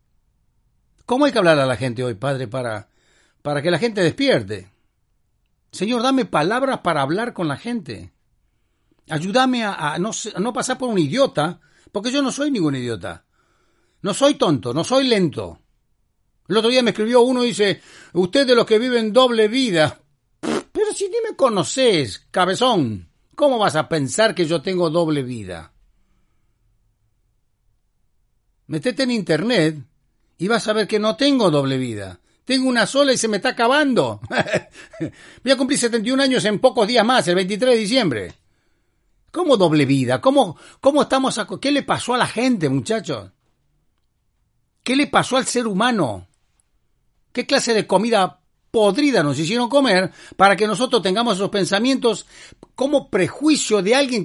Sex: male